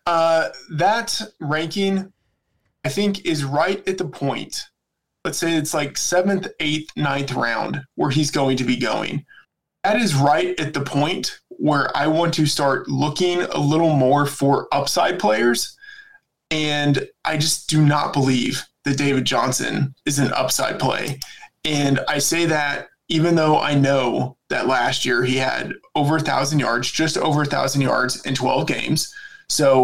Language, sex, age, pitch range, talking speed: English, male, 20-39, 130-160 Hz, 165 wpm